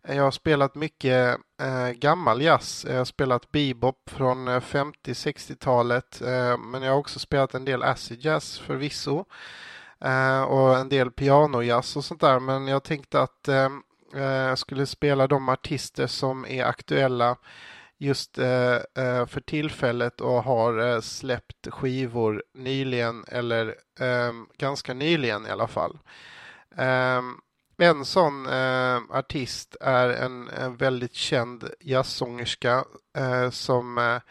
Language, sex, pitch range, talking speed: Swedish, male, 125-140 Hz, 130 wpm